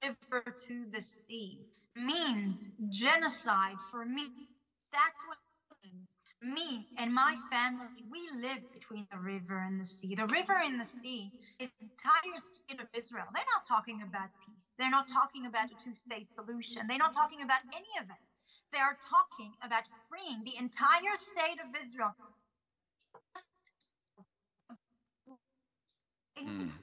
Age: 30-49